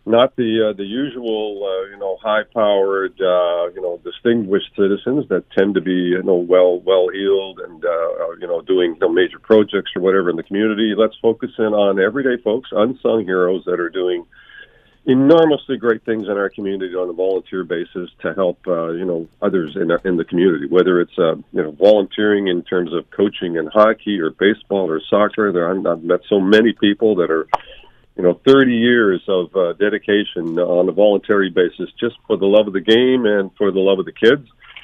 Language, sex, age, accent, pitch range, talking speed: English, male, 50-69, American, 95-115 Hz, 205 wpm